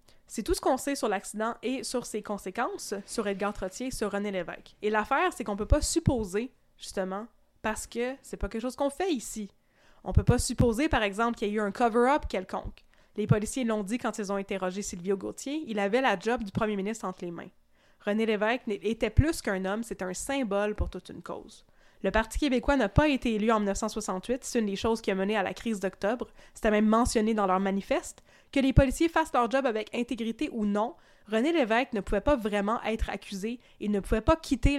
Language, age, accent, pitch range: French, 20-39, Canadian, 200-255 Hz